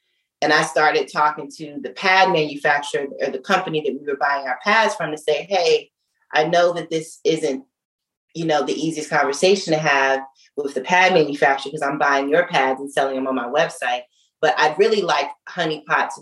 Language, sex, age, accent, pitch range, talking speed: English, female, 30-49, American, 145-210 Hz, 200 wpm